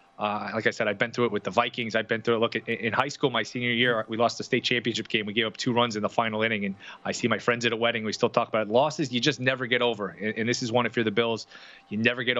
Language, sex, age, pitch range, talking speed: English, male, 20-39, 115-145 Hz, 325 wpm